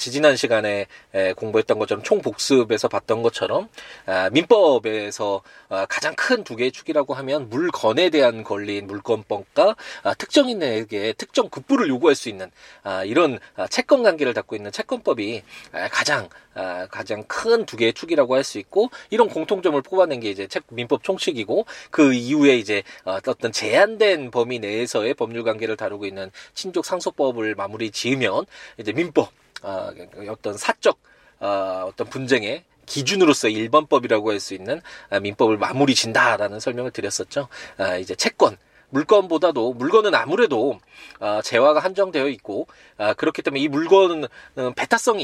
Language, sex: Korean, male